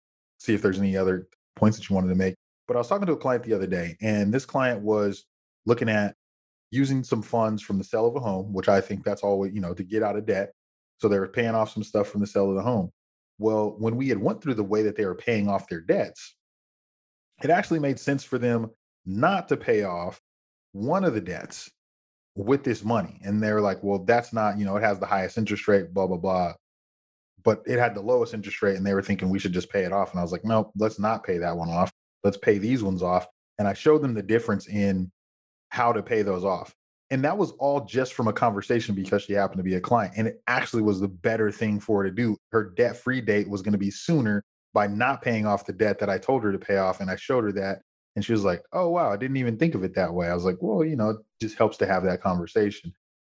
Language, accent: English, American